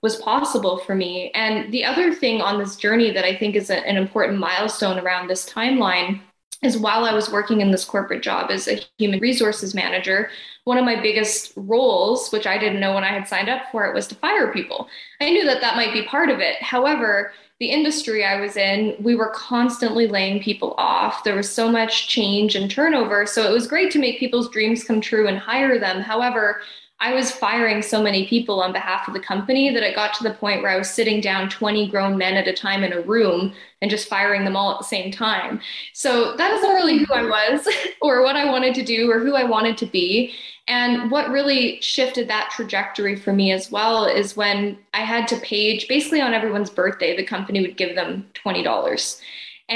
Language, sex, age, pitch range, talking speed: English, female, 10-29, 200-240 Hz, 220 wpm